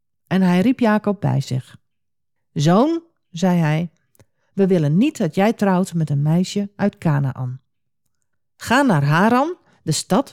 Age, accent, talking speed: 50-69, Dutch, 145 wpm